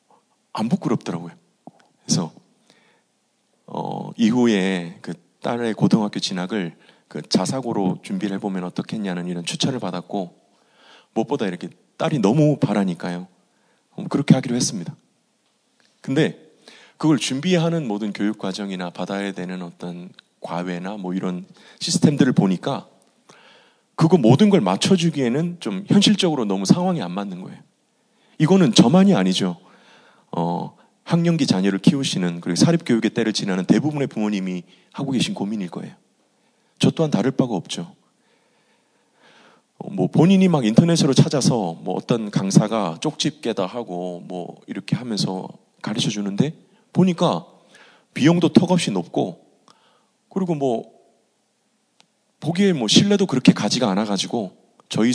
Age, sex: 30-49, male